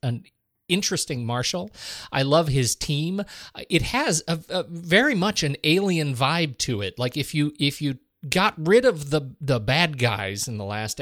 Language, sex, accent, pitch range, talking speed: English, male, American, 125-170 Hz, 180 wpm